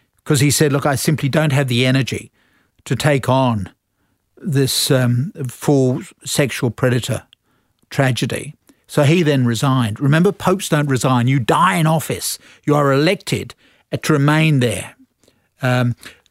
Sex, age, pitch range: male, 50-69, 125-155 Hz